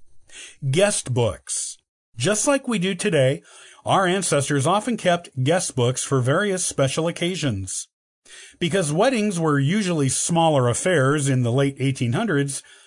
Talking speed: 125 wpm